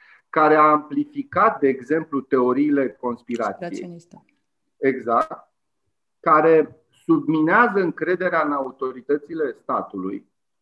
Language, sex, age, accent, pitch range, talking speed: Romanian, male, 30-49, native, 125-190 Hz, 75 wpm